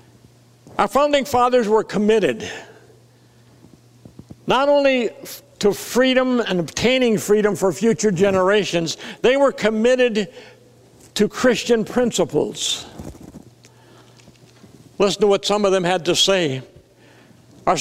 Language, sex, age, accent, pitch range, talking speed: English, male, 60-79, American, 160-225 Hz, 105 wpm